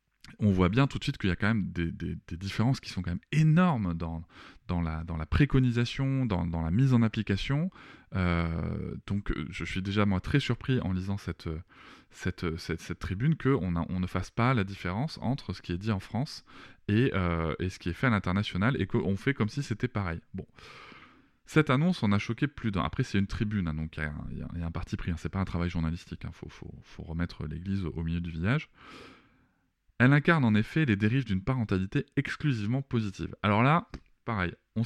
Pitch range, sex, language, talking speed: 85-125 Hz, male, French, 225 wpm